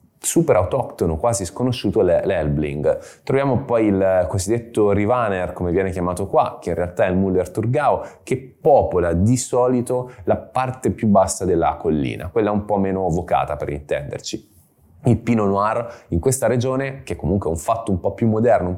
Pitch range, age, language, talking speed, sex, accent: 90-120 Hz, 20-39, Italian, 175 wpm, male, native